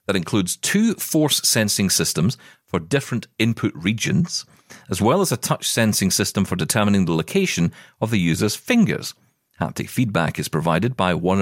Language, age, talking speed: English, 40-59, 160 wpm